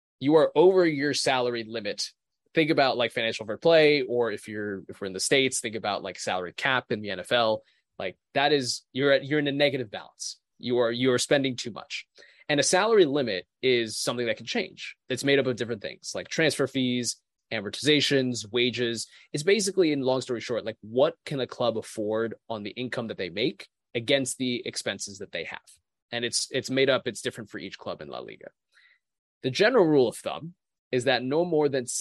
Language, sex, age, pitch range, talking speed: English, male, 20-39, 110-140 Hz, 210 wpm